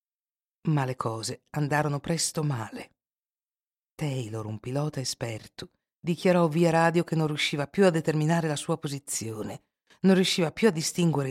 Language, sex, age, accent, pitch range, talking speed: Italian, female, 50-69, native, 130-160 Hz, 145 wpm